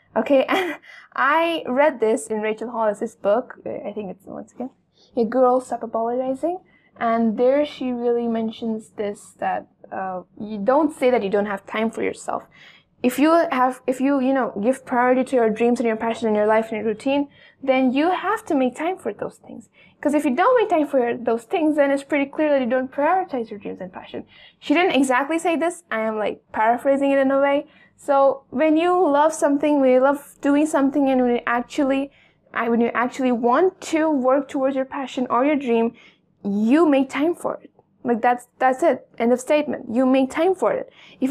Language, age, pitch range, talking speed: English, 10-29, 235-295 Hz, 210 wpm